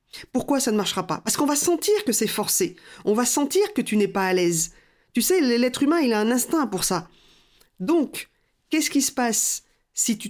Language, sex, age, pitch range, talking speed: French, female, 40-59, 200-290 Hz, 220 wpm